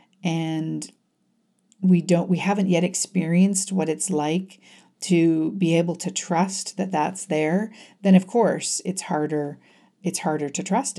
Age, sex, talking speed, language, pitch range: 50-69, female, 145 wpm, English, 155-190 Hz